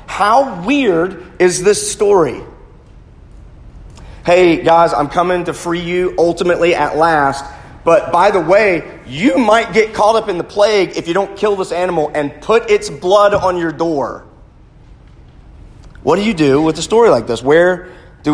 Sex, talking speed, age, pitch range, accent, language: male, 165 wpm, 40-59, 160-195 Hz, American, English